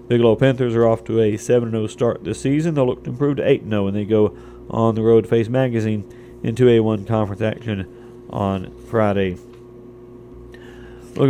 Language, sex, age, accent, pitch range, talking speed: English, male, 40-59, American, 115-125 Hz, 175 wpm